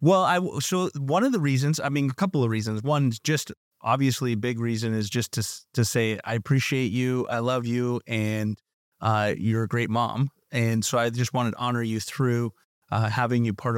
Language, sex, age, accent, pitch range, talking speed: English, male, 30-49, American, 110-135 Hz, 215 wpm